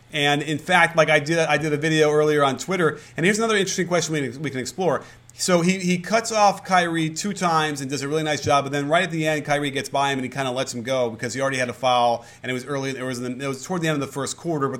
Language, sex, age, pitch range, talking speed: English, male, 30-49, 125-170 Hz, 310 wpm